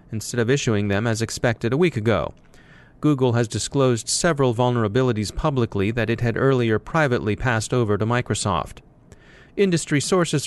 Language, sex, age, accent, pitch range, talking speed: English, male, 30-49, American, 115-140 Hz, 150 wpm